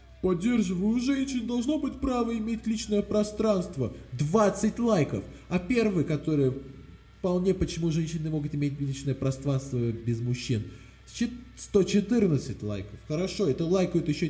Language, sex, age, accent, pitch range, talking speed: Russian, male, 20-39, native, 135-225 Hz, 120 wpm